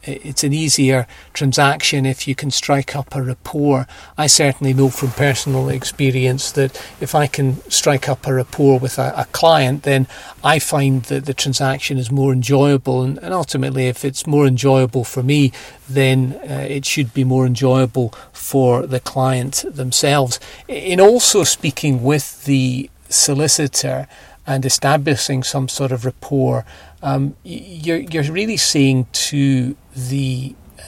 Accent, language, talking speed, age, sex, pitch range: British, English, 150 wpm, 40-59, male, 130-145 Hz